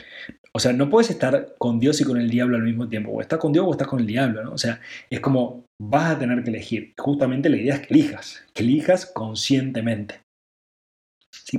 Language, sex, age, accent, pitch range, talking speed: Spanish, male, 30-49, Argentinian, 120-165 Hz, 225 wpm